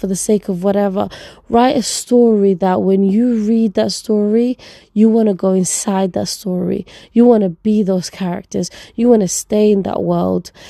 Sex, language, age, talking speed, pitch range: female, English, 20-39, 190 wpm, 200-235 Hz